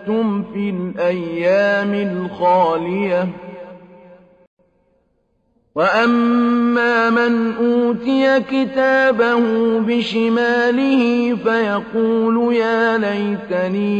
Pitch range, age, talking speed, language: 200-230 Hz, 40-59, 45 wpm, Arabic